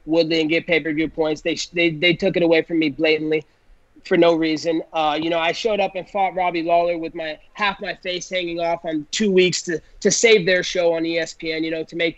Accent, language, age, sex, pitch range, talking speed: American, English, 30-49, male, 175-230 Hz, 235 wpm